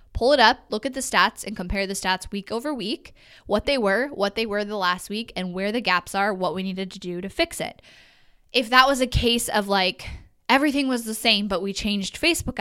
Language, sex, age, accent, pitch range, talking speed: English, female, 10-29, American, 190-235 Hz, 245 wpm